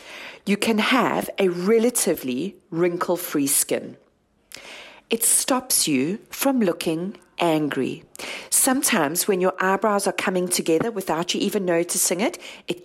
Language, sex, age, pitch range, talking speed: English, female, 40-59, 180-255 Hz, 120 wpm